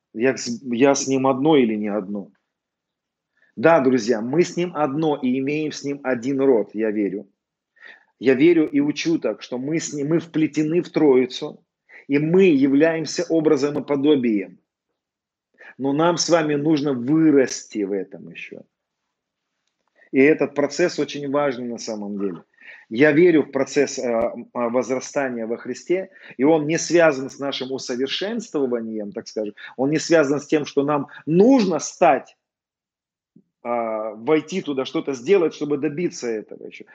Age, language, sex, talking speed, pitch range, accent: 30-49, Russian, male, 150 wpm, 130-165 Hz, native